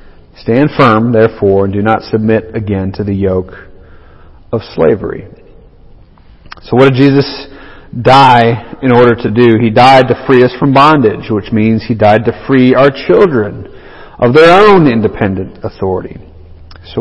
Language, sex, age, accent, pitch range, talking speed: English, male, 40-59, American, 100-130 Hz, 150 wpm